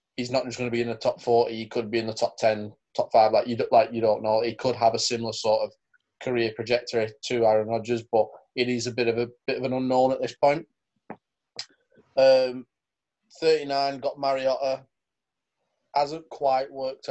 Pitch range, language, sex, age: 120-135 Hz, English, male, 20-39